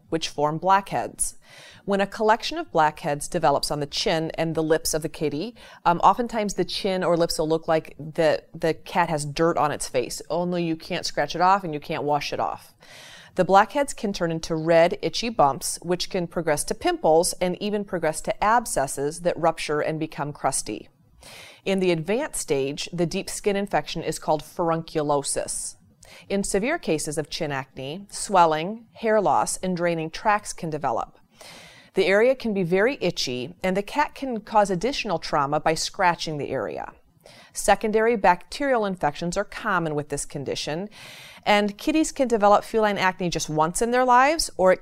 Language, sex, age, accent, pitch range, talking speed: English, female, 30-49, American, 155-205 Hz, 180 wpm